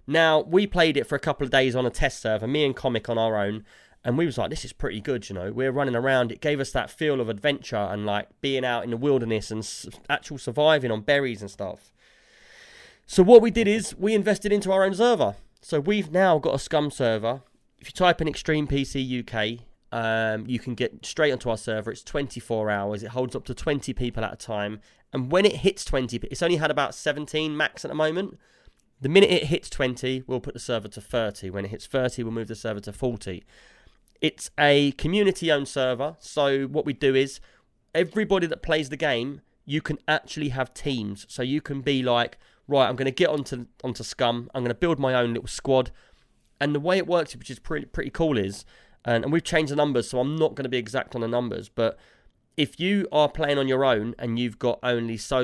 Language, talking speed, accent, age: English, 230 wpm, British, 20-39